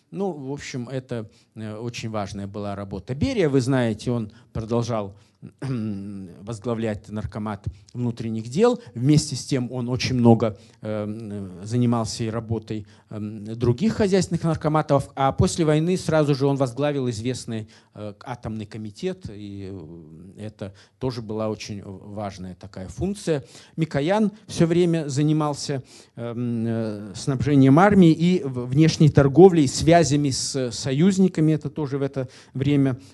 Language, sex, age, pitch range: Russian, male, 50-69, 110-150 Hz